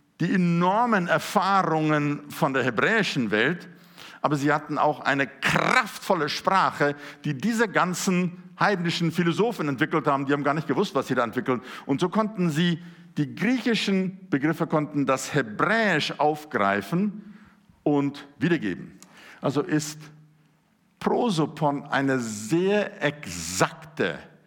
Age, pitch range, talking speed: 50-69, 135-180 Hz, 120 wpm